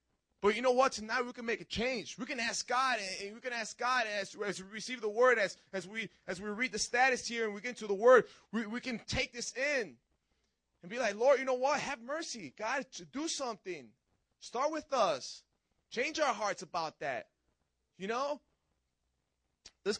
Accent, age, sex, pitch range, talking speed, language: American, 20-39, male, 145-220 Hz, 205 wpm, English